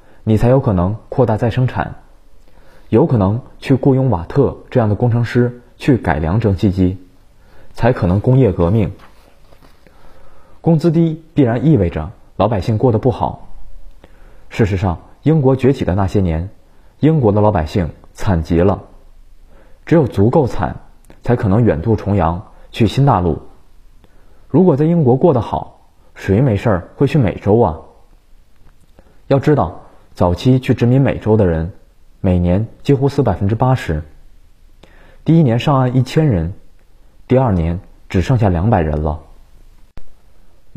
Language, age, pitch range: Chinese, 20-39, 90-125 Hz